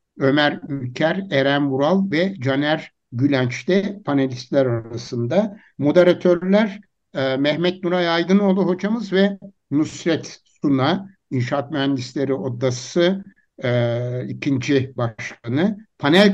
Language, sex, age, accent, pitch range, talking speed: Turkish, male, 60-79, native, 130-185 Hz, 85 wpm